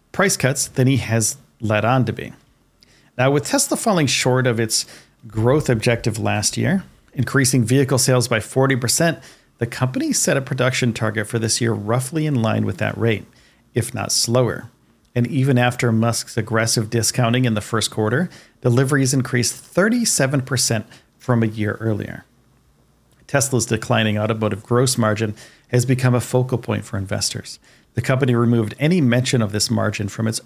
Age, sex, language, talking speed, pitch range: 40-59, male, English, 160 wpm, 110-130 Hz